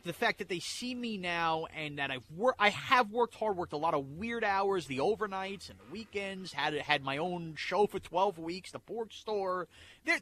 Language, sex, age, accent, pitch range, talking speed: English, male, 30-49, American, 150-225 Hz, 225 wpm